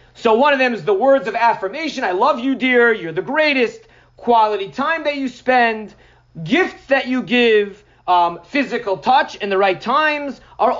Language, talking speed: English, 185 wpm